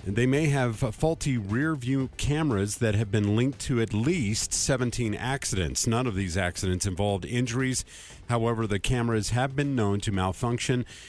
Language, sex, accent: English, male, American